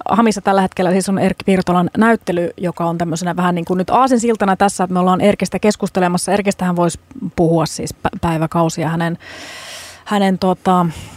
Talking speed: 165 wpm